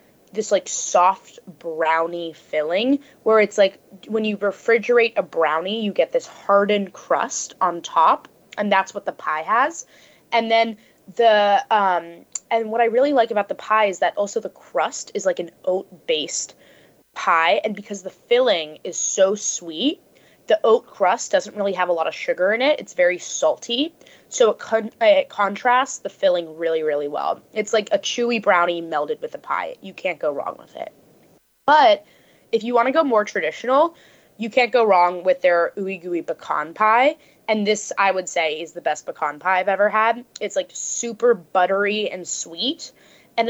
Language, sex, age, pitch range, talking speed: English, female, 20-39, 180-235 Hz, 185 wpm